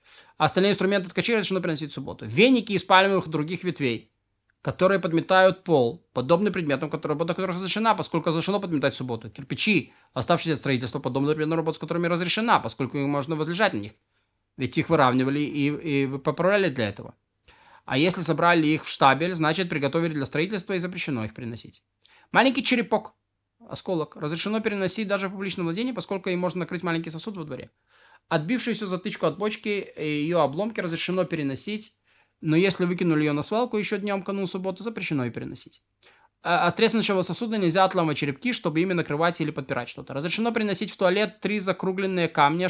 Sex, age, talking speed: male, 20-39, 165 wpm